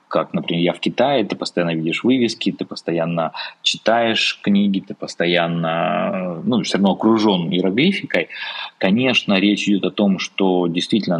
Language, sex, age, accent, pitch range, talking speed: Russian, male, 20-39, native, 90-115 Hz, 145 wpm